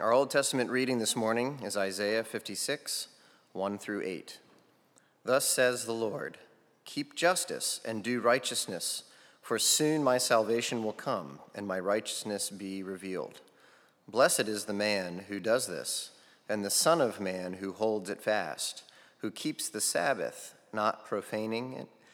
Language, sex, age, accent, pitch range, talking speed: English, male, 30-49, American, 100-120 Hz, 150 wpm